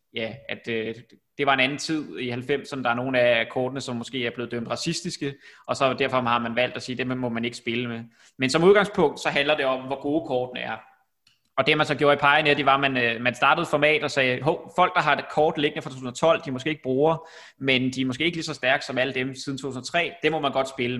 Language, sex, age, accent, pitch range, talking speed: Danish, male, 20-39, native, 120-145 Hz, 265 wpm